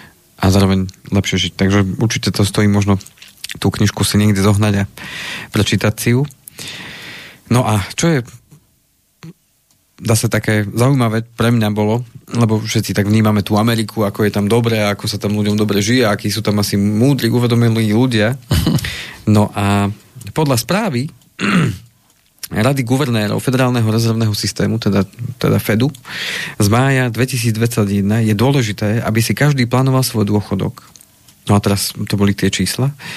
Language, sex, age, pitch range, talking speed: Slovak, male, 30-49, 105-125 Hz, 145 wpm